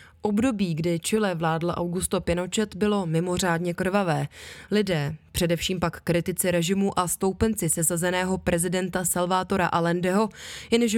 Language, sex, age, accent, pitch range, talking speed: Czech, female, 20-39, native, 170-210 Hz, 115 wpm